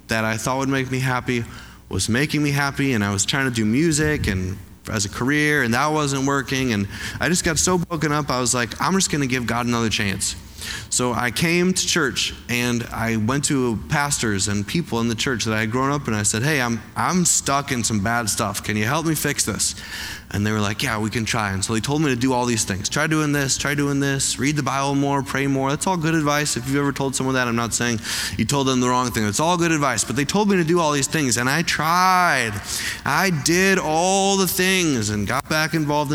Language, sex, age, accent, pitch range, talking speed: English, male, 20-39, American, 105-150 Hz, 255 wpm